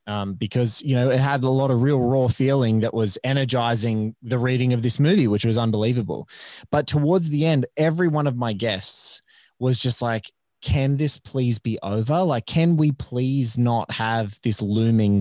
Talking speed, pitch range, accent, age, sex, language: 190 wpm, 115-150 Hz, Australian, 20-39, male, English